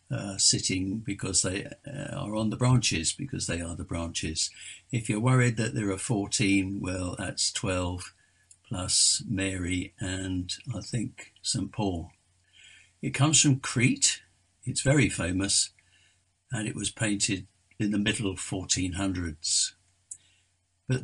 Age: 60-79